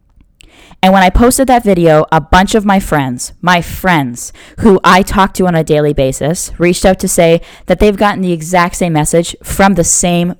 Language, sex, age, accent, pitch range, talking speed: English, female, 10-29, American, 145-185 Hz, 200 wpm